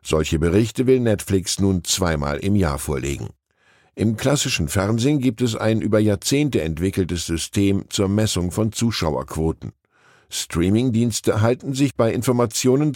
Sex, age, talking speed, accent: male, 10-29, 130 wpm, German